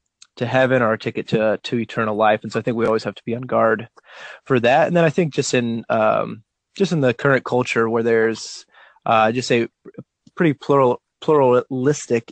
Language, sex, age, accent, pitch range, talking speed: English, male, 20-39, American, 110-130 Hz, 205 wpm